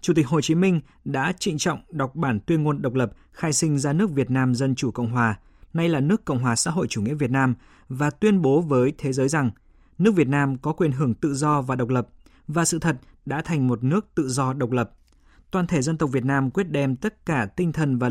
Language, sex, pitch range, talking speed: Vietnamese, male, 125-160 Hz, 255 wpm